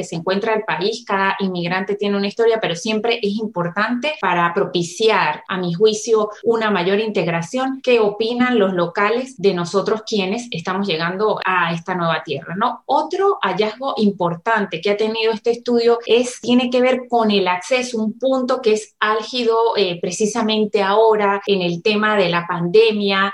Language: English